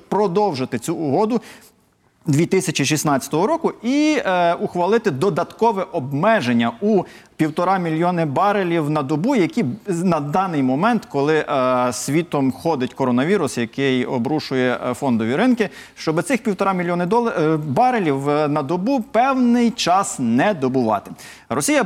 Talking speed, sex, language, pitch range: 115 wpm, male, Ukrainian, 130-205 Hz